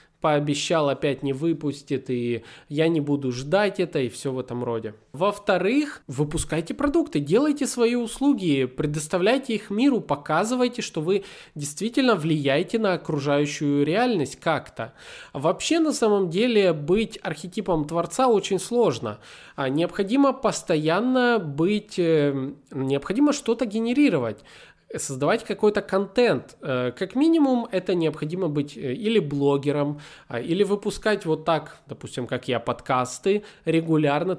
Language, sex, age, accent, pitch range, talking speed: Russian, male, 20-39, native, 140-210 Hz, 115 wpm